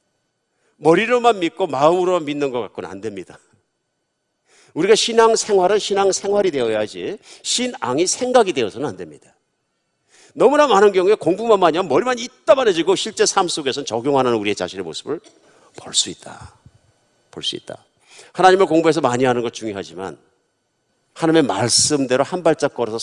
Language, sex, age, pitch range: Korean, male, 50-69, 130-215 Hz